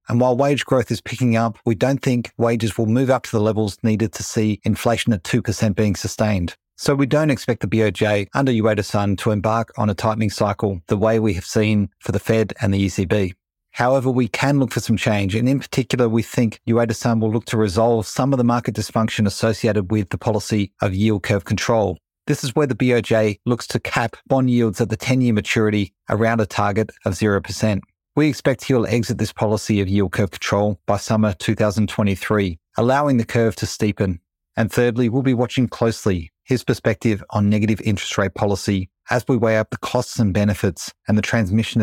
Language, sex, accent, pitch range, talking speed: English, male, Australian, 105-120 Hz, 205 wpm